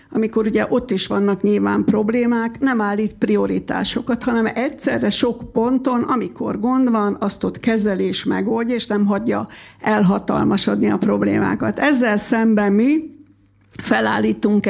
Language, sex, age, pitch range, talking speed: Hungarian, female, 60-79, 205-240 Hz, 125 wpm